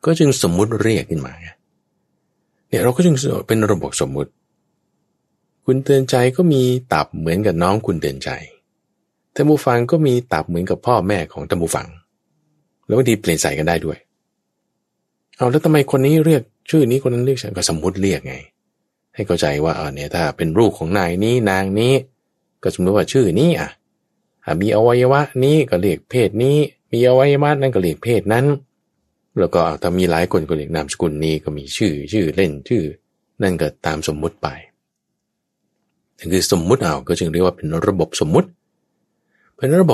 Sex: male